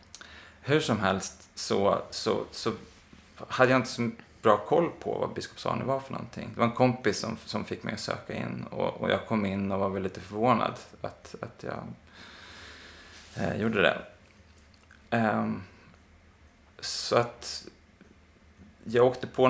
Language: Swedish